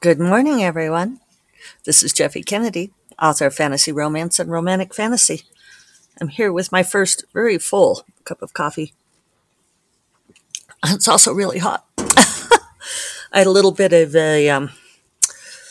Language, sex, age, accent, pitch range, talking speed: English, female, 50-69, American, 155-225 Hz, 140 wpm